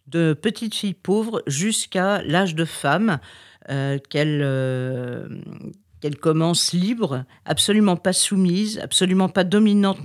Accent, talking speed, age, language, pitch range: French, 120 wpm, 50-69, French, 150-195 Hz